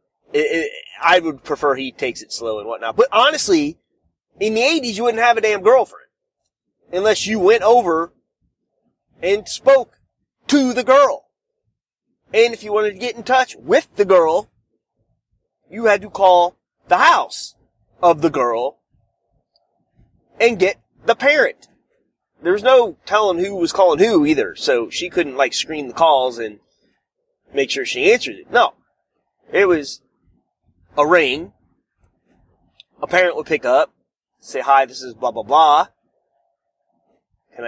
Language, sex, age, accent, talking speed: English, male, 30-49, American, 150 wpm